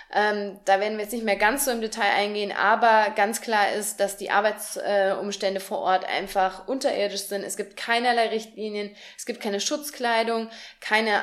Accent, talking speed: German, 180 wpm